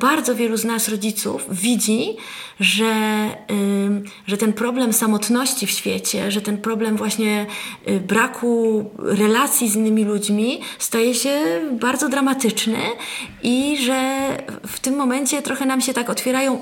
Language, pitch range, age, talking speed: Polish, 210-250 Hz, 20-39, 130 wpm